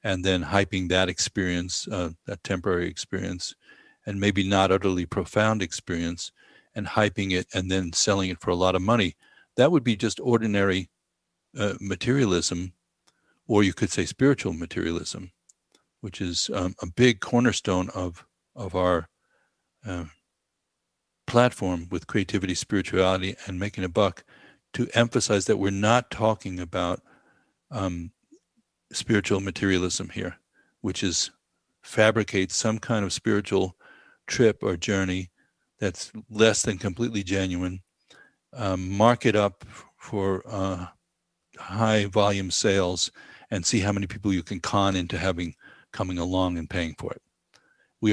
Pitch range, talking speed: 90-105 Hz, 135 wpm